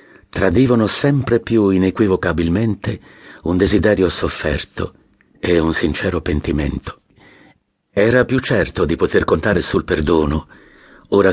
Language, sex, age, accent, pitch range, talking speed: Italian, male, 50-69, native, 80-115 Hz, 105 wpm